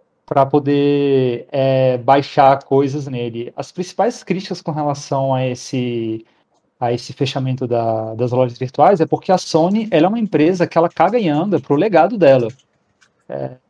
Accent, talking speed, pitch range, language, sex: Brazilian, 165 wpm, 130-170 Hz, Portuguese, male